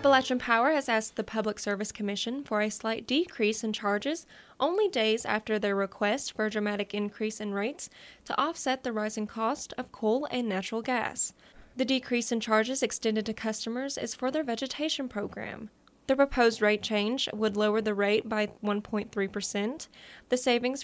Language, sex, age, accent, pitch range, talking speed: English, female, 10-29, American, 205-245 Hz, 175 wpm